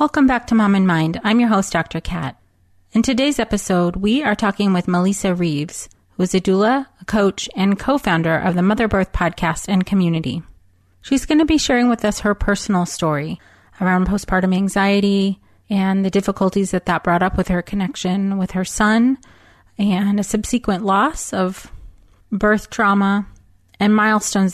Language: English